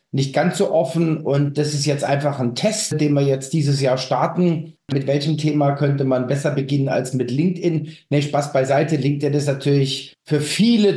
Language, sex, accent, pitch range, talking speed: German, male, German, 145-175 Hz, 190 wpm